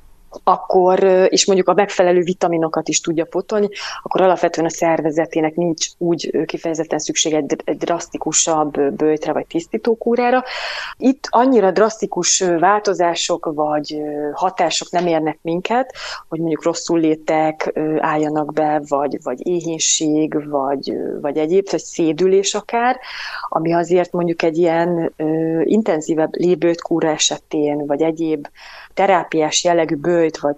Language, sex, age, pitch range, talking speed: Hungarian, female, 30-49, 155-185 Hz, 120 wpm